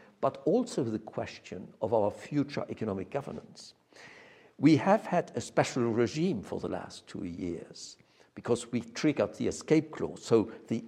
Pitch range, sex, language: 115-165 Hz, male, English